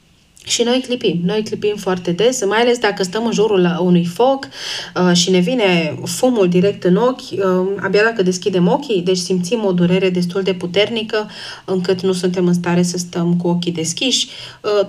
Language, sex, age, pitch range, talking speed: Romanian, female, 30-49, 175-210 Hz, 190 wpm